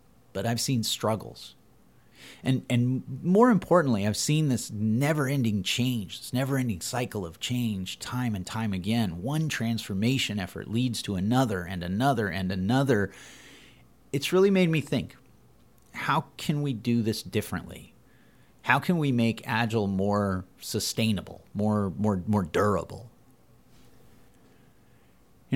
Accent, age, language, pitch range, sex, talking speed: American, 30-49, English, 100-130 Hz, male, 130 wpm